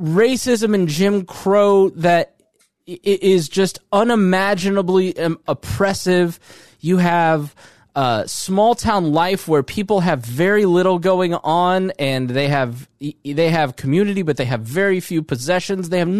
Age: 20-39